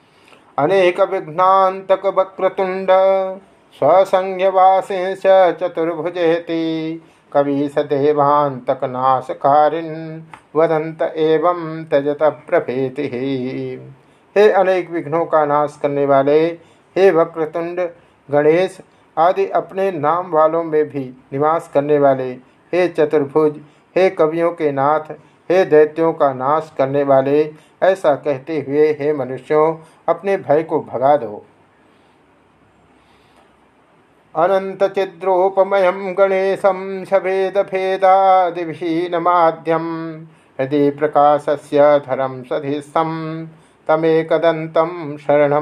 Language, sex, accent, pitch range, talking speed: Hindi, male, native, 145-185 Hz, 85 wpm